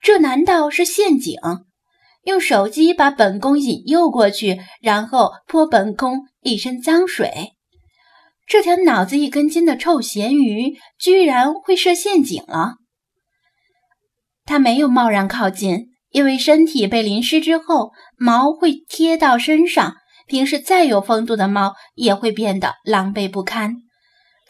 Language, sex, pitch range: Chinese, female, 225-330 Hz